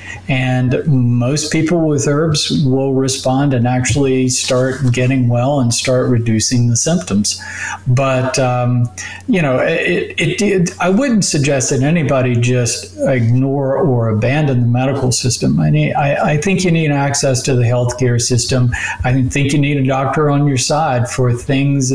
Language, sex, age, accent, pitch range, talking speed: English, male, 50-69, American, 120-135 Hz, 160 wpm